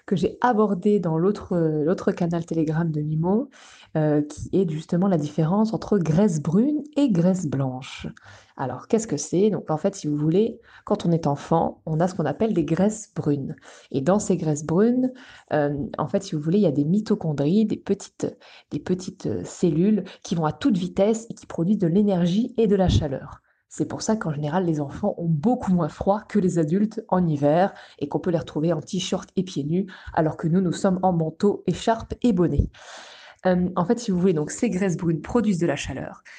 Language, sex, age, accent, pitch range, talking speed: French, female, 20-39, French, 165-210 Hz, 215 wpm